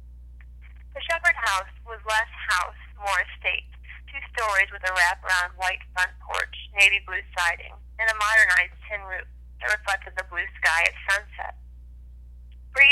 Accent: American